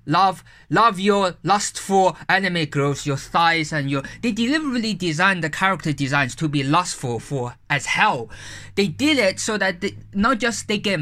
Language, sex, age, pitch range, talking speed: English, male, 20-39, 150-210 Hz, 180 wpm